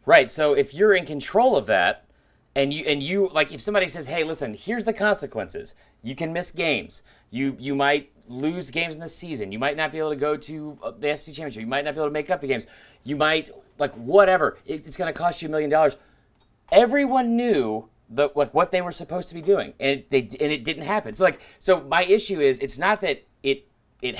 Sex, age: male, 30-49